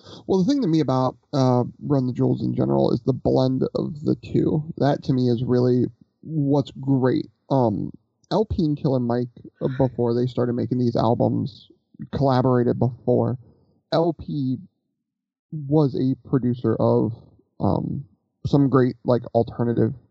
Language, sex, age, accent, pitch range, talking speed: English, male, 30-49, American, 120-145 Hz, 145 wpm